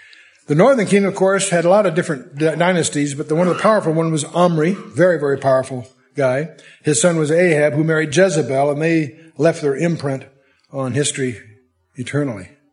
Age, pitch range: 60-79, 130-165 Hz